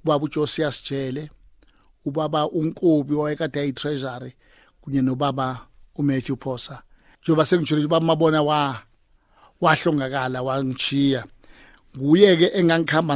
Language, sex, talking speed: English, male, 100 wpm